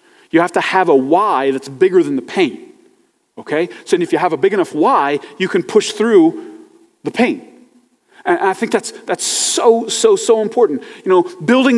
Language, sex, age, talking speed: English, male, 30-49, 195 wpm